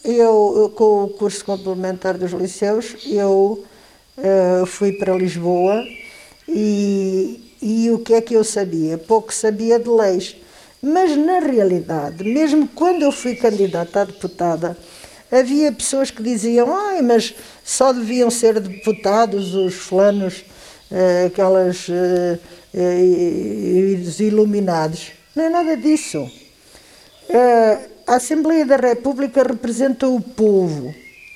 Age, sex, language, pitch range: 50-69, female, Portuguese, 190-270 Hz